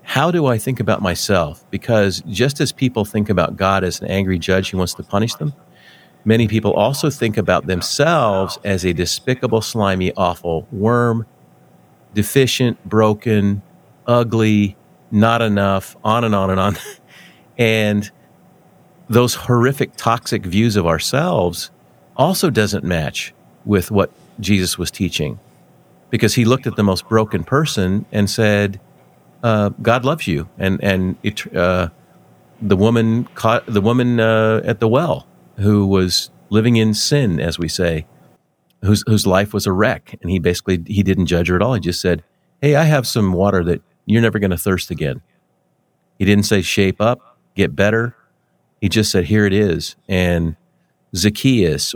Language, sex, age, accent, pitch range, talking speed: English, male, 40-59, American, 95-115 Hz, 160 wpm